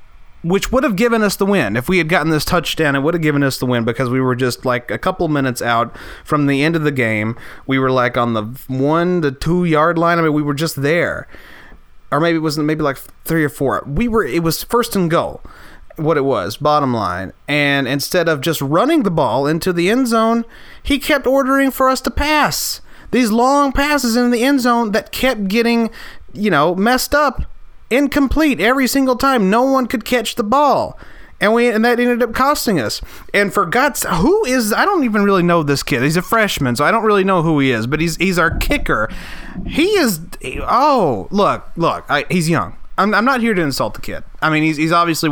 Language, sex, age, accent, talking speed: English, male, 30-49, American, 230 wpm